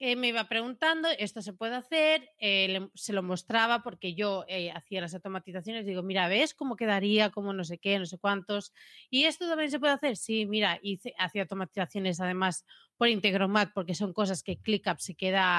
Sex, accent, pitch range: female, Spanish, 190-245 Hz